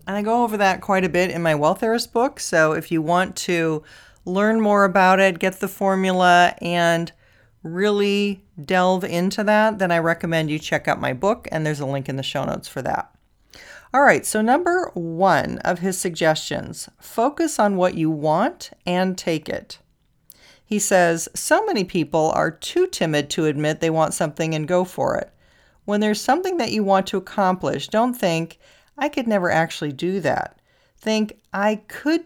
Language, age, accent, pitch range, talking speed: English, 40-59, American, 165-210 Hz, 185 wpm